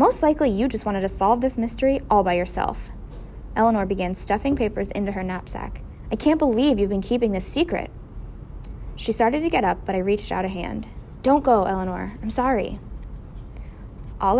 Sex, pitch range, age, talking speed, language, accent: female, 195-245 Hz, 20-39, 185 wpm, English, American